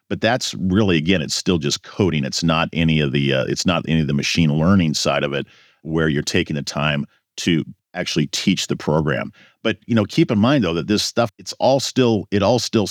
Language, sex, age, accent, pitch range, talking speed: English, male, 50-69, American, 85-105 Hz, 230 wpm